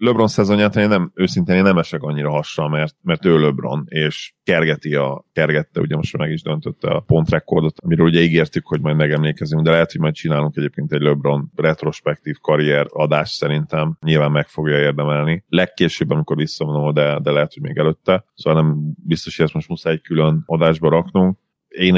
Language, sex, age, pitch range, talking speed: Hungarian, male, 30-49, 75-80 Hz, 180 wpm